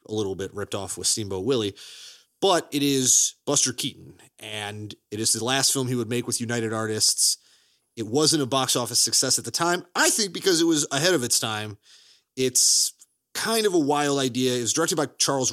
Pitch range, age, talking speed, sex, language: 120-155 Hz, 30-49, 210 wpm, male, English